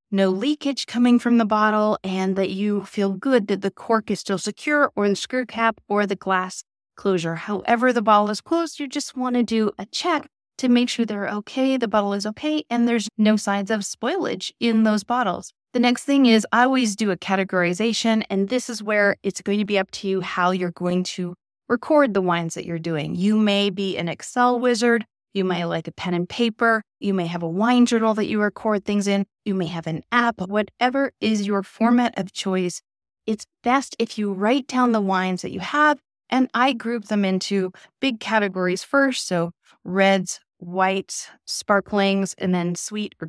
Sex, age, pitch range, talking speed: female, 30-49, 190-240 Hz, 205 wpm